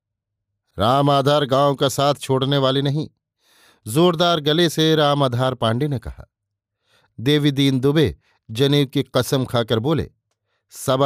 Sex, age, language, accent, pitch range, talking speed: male, 50-69, Hindi, native, 110-155 Hz, 135 wpm